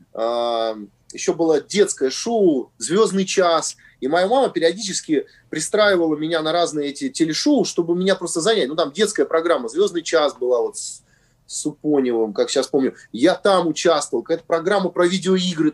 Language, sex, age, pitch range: Russian, male, 30-49, 150-215 Hz